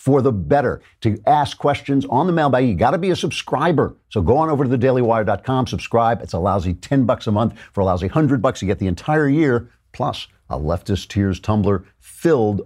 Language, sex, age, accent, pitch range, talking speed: English, male, 50-69, American, 100-135 Hz, 210 wpm